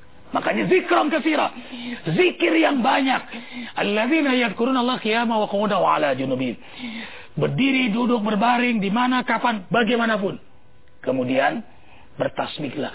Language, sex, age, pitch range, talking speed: English, male, 40-59, 200-255 Hz, 70 wpm